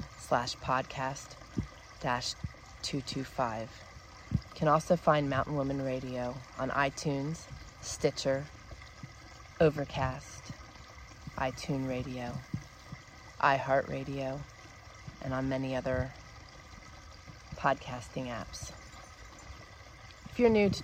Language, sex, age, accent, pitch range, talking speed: English, female, 30-49, American, 125-145 Hz, 90 wpm